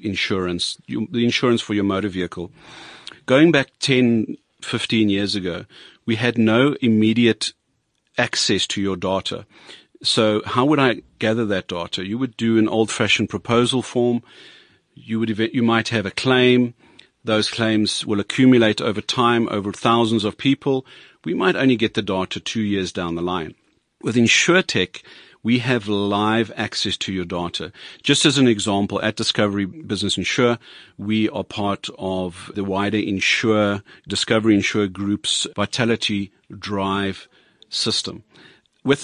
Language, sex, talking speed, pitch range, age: English, male, 145 wpm, 100-120 Hz, 40-59